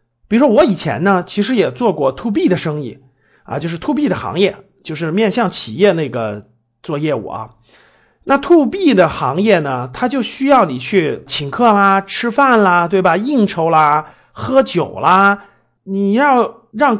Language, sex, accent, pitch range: Chinese, male, native, 165-230 Hz